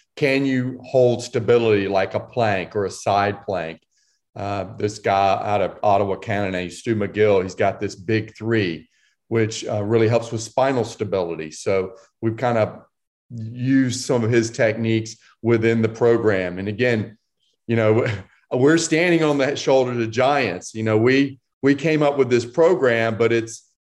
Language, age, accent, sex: English, 40-59, American, male